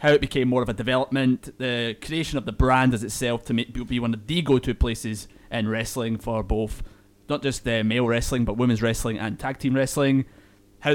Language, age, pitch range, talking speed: English, 30-49, 110-135 Hz, 210 wpm